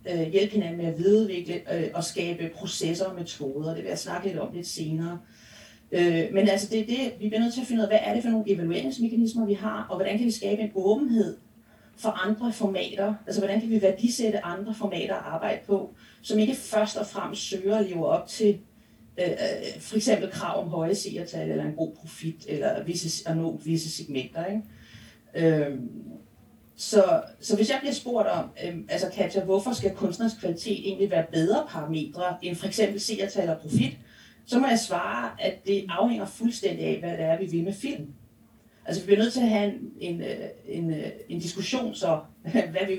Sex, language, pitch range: female, Danish, 170-220 Hz